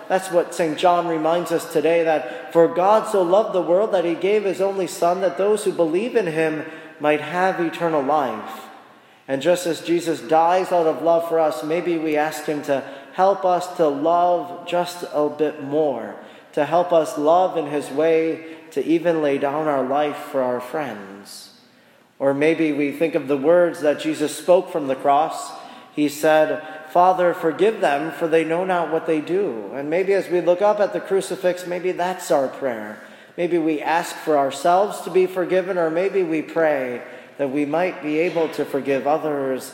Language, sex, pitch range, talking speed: English, male, 145-175 Hz, 190 wpm